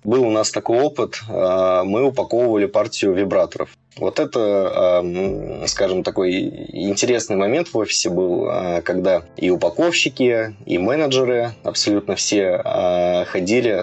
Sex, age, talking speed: male, 20-39, 115 wpm